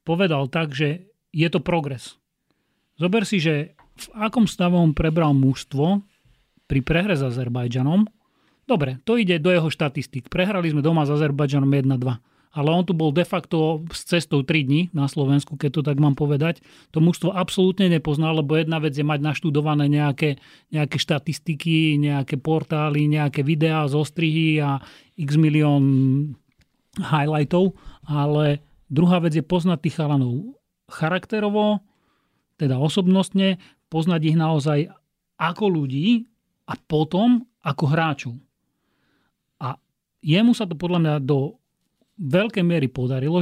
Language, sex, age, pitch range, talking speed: Slovak, male, 30-49, 145-180 Hz, 135 wpm